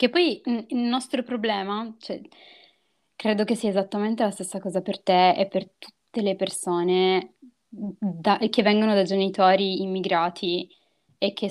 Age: 20-39